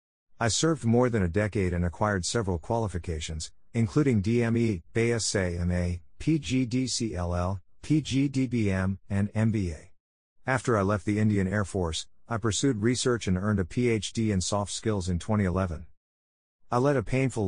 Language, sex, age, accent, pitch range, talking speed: English, male, 50-69, American, 90-110 Hz, 135 wpm